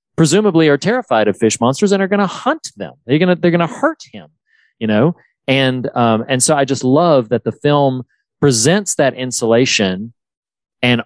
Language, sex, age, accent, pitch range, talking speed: English, male, 40-59, American, 115-145 Hz, 195 wpm